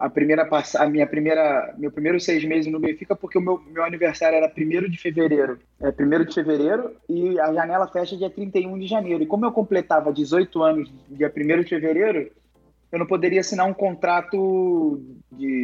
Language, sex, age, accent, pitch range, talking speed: Portuguese, male, 20-39, Brazilian, 160-210 Hz, 190 wpm